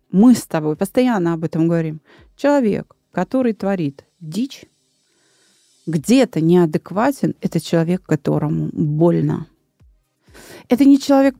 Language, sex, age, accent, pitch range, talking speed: Russian, female, 30-49, native, 165-240 Hz, 105 wpm